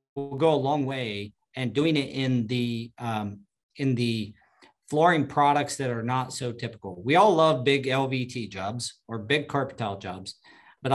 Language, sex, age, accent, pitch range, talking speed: English, male, 40-59, American, 115-140 Hz, 175 wpm